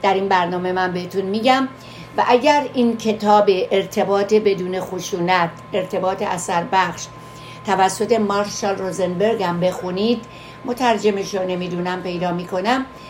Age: 60-79